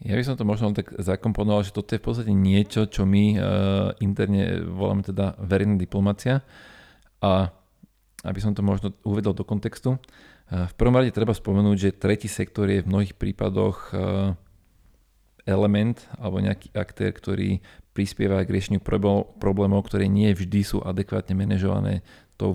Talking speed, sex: 155 wpm, male